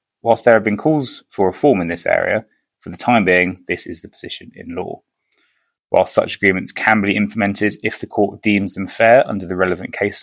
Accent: British